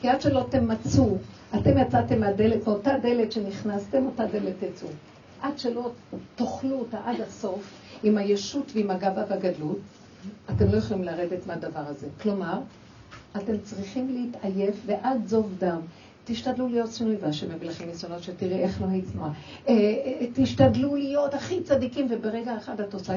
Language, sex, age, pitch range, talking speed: Hebrew, female, 60-79, 180-250 Hz, 155 wpm